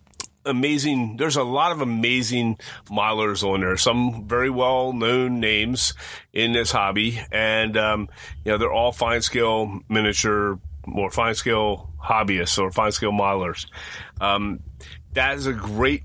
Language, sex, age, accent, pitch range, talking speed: English, male, 30-49, American, 105-125 Hz, 145 wpm